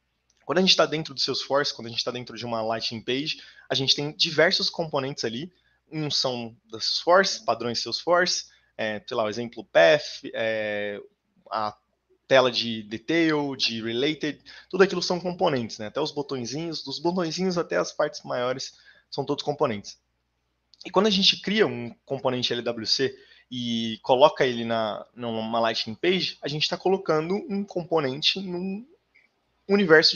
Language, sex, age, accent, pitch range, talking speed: Portuguese, male, 20-39, Brazilian, 110-165 Hz, 160 wpm